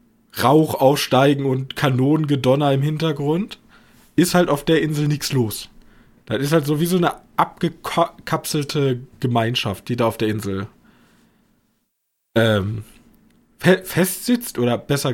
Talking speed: 125 wpm